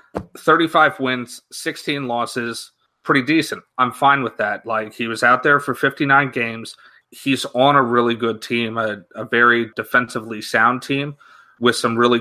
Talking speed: 160 wpm